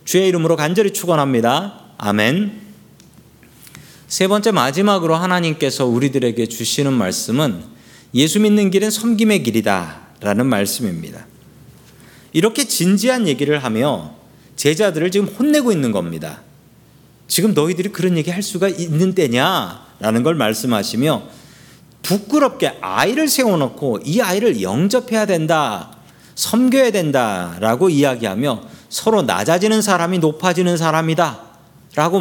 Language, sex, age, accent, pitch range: Korean, male, 40-59, native, 135-205 Hz